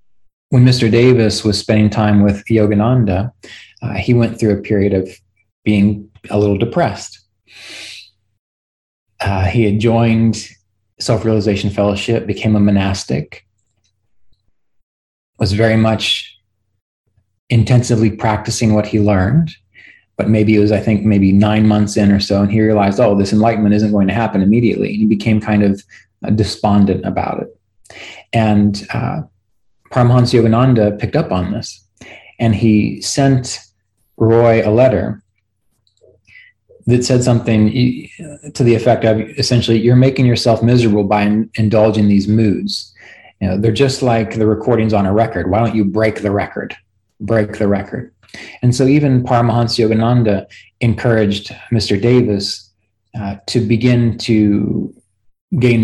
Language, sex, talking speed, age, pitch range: English, male, 135 wpm, 30-49, 100-115 Hz